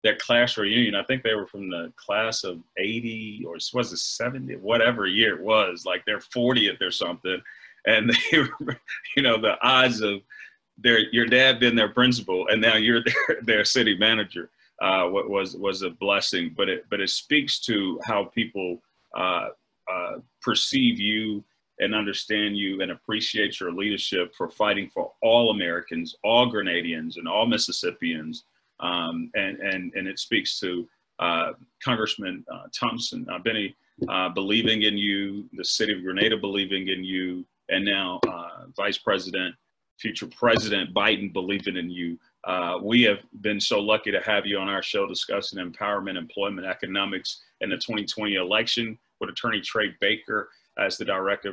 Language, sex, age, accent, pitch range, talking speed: English, male, 40-59, American, 95-120 Hz, 165 wpm